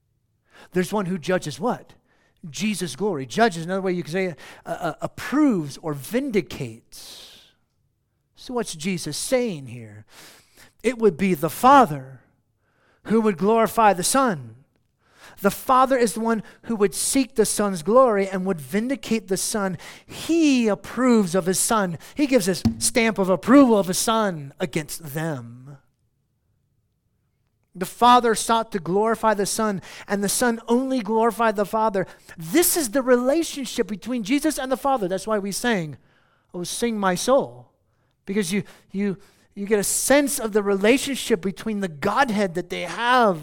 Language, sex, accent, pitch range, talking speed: English, male, American, 145-230 Hz, 155 wpm